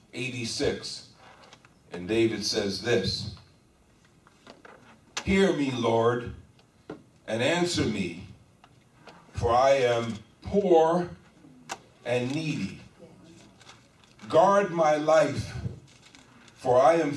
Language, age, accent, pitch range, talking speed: English, 50-69, American, 115-185 Hz, 80 wpm